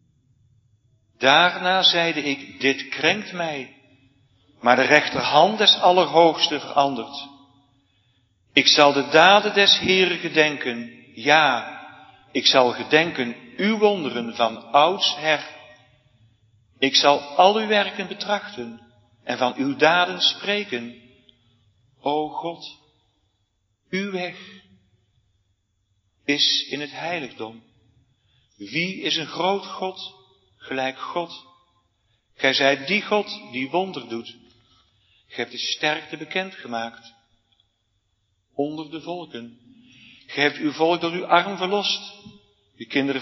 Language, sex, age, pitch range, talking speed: Dutch, male, 50-69, 120-170 Hz, 110 wpm